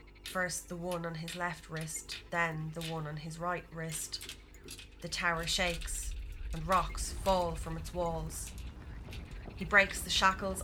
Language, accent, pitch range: English, Irish, 155-180 Hz